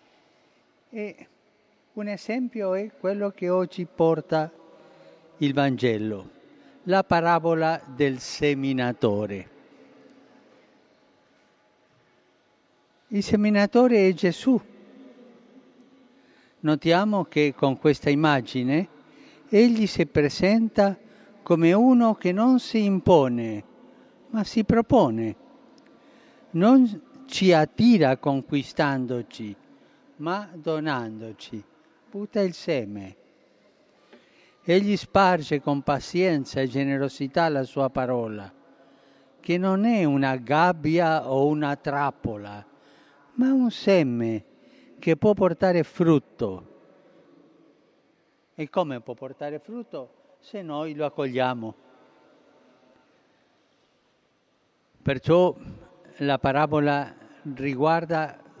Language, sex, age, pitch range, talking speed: Italian, male, 50-69, 140-205 Hz, 85 wpm